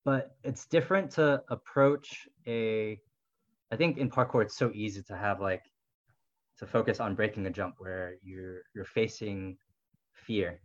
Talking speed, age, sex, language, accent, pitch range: 150 wpm, 20-39, male, English, American, 95-120 Hz